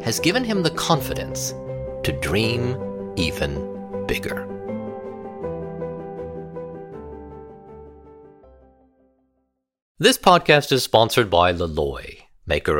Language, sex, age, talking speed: English, male, 50-69, 75 wpm